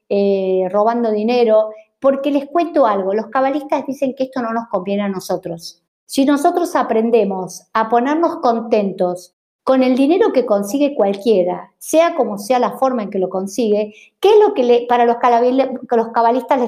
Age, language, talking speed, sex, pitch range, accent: 50-69, Spanish, 165 wpm, female, 225-285 Hz, American